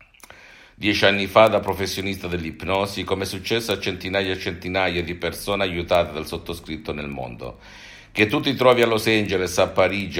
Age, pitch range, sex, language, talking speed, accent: 60-79, 80-95 Hz, male, Italian, 170 wpm, native